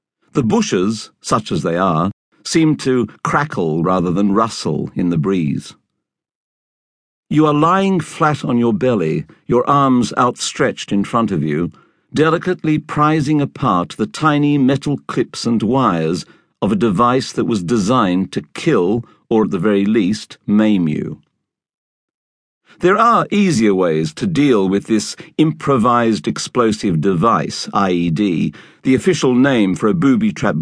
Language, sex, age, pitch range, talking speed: English, male, 50-69, 105-155 Hz, 140 wpm